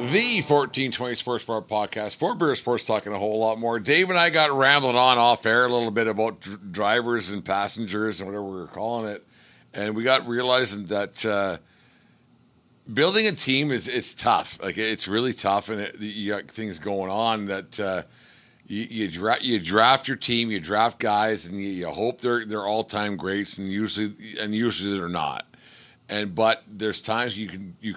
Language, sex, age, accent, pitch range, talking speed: English, male, 50-69, American, 100-115 Hz, 195 wpm